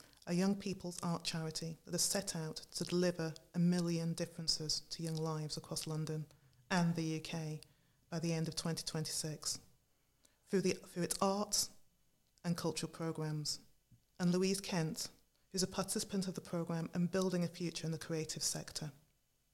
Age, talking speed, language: 30-49, 160 wpm, English